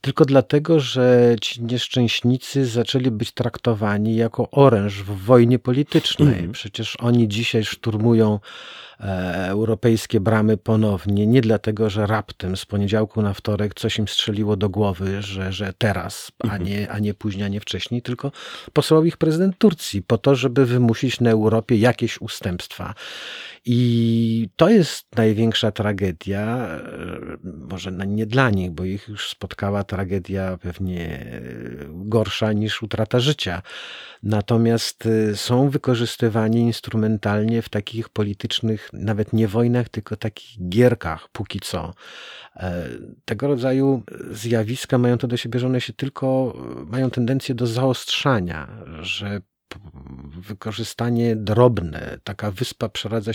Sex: male